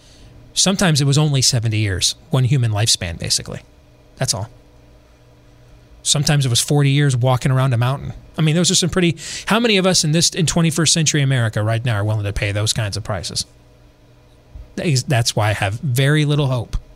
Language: English